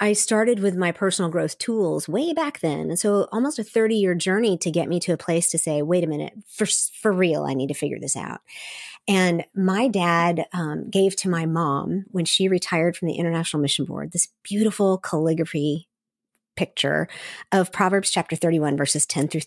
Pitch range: 170-205 Hz